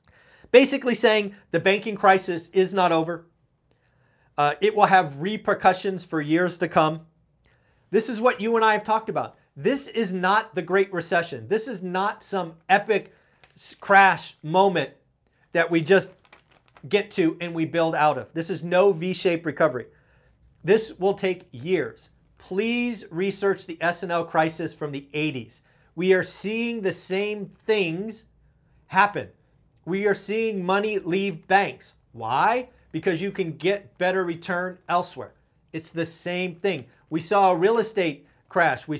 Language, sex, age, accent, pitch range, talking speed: English, male, 40-59, American, 160-200 Hz, 150 wpm